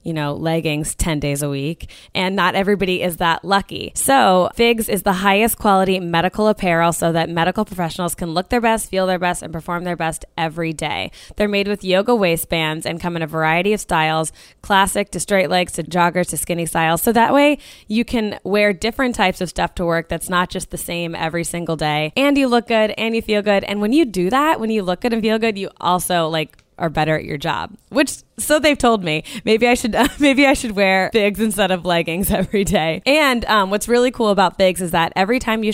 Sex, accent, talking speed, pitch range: female, American, 230 wpm, 165-210 Hz